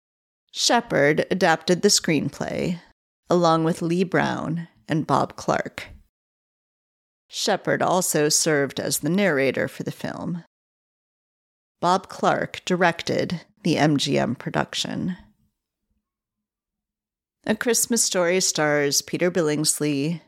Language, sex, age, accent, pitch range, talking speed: English, female, 40-59, American, 150-190 Hz, 95 wpm